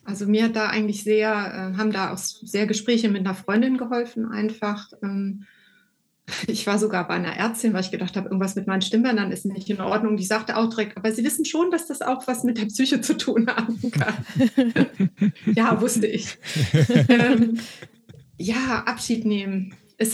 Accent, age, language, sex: German, 30-49, German, female